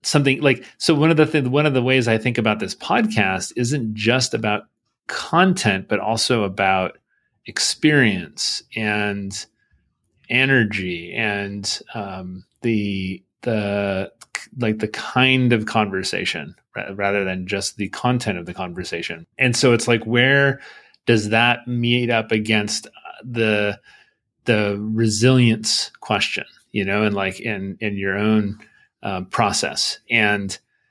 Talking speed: 135 wpm